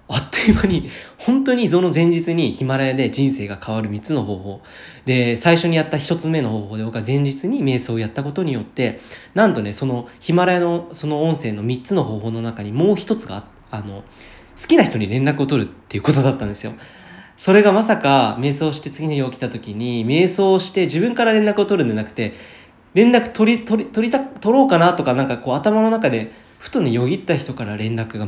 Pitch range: 110-170 Hz